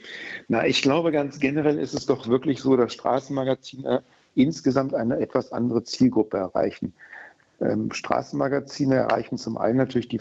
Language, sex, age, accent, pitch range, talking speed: German, male, 60-79, German, 125-135 Hz, 140 wpm